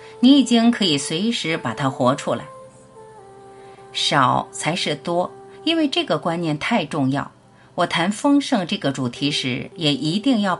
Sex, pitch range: female, 140-220 Hz